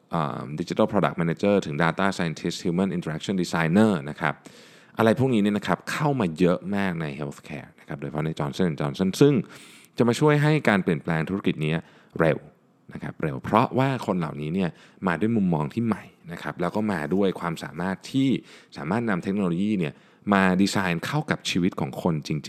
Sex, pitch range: male, 80-110 Hz